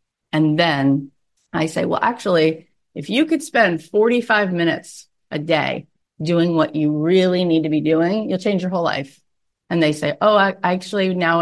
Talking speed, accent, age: 180 wpm, American, 30-49